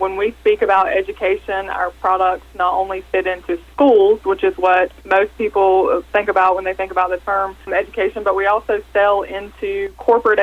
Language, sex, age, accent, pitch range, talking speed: English, female, 20-39, American, 180-200 Hz, 185 wpm